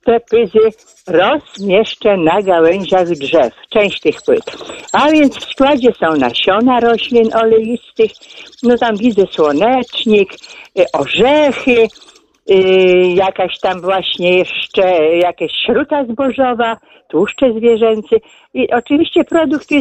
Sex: female